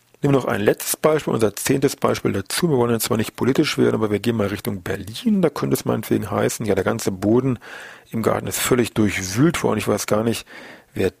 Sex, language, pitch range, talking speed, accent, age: male, German, 105-125 Hz, 225 wpm, German, 40-59